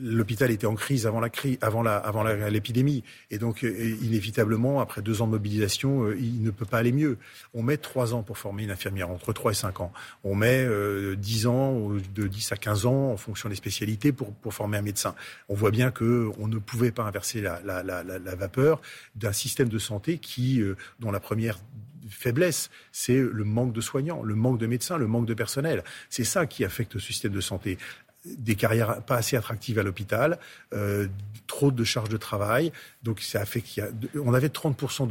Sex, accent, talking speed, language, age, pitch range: male, French, 220 wpm, French, 40-59, 105-125 Hz